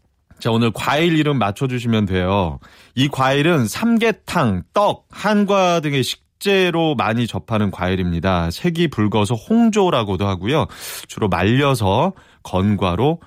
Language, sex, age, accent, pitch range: Korean, male, 30-49, native, 90-135 Hz